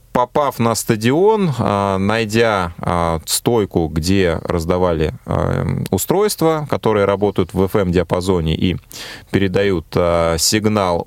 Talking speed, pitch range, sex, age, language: 80 wpm, 100-130 Hz, male, 20-39, Russian